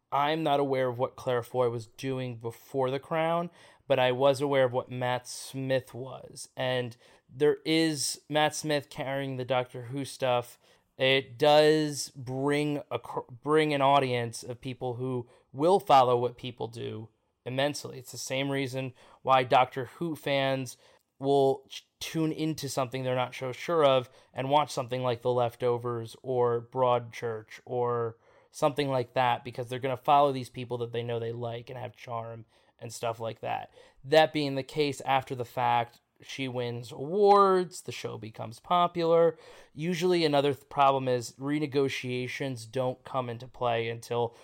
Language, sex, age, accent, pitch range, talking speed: English, male, 20-39, American, 125-145 Hz, 160 wpm